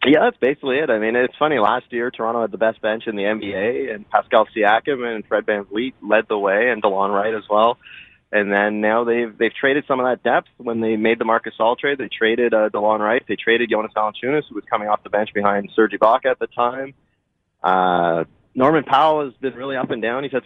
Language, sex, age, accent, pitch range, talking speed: English, male, 20-39, American, 110-130 Hz, 240 wpm